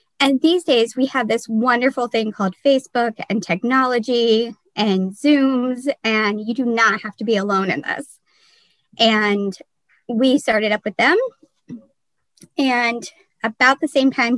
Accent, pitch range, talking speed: American, 215-265 Hz, 145 wpm